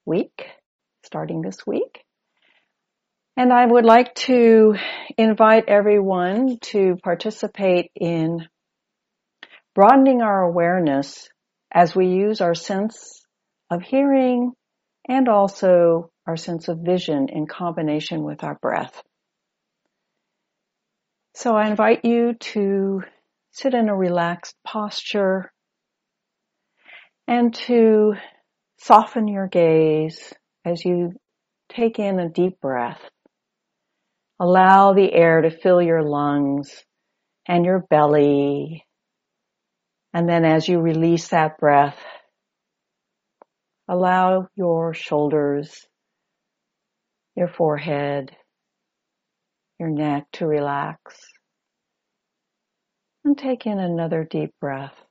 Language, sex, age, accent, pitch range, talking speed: English, female, 60-79, American, 165-215 Hz, 95 wpm